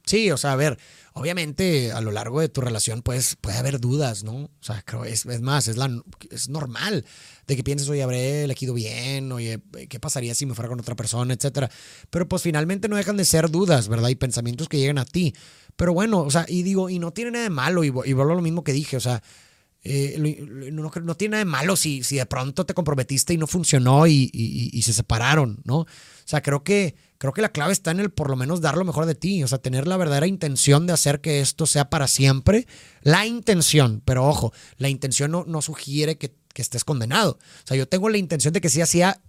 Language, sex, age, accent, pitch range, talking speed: Spanish, male, 30-49, Mexican, 135-180 Hz, 245 wpm